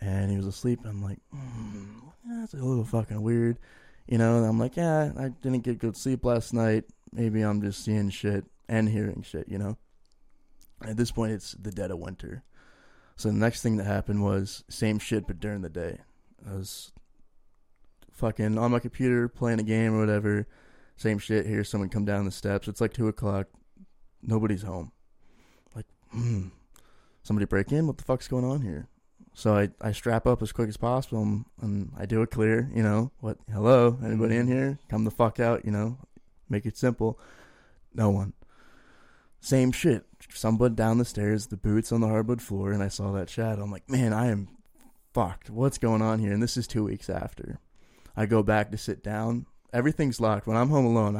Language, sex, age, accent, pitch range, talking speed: English, male, 20-39, American, 105-120 Hz, 200 wpm